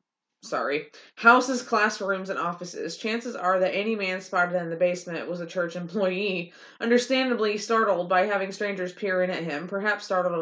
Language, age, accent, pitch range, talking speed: English, 20-39, American, 175-210 Hz, 165 wpm